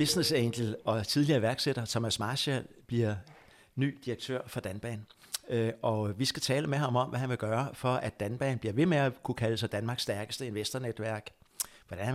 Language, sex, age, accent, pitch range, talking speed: Danish, male, 60-79, native, 105-130 Hz, 190 wpm